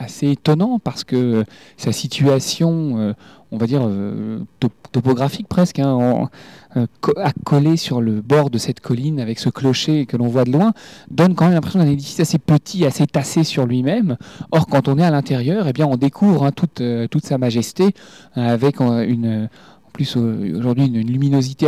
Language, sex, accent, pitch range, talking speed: French, male, French, 120-155 Hz, 160 wpm